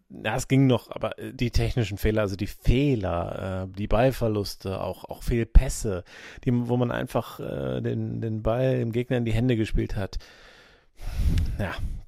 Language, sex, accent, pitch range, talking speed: German, male, German, 105-130 Hz, 155 wpm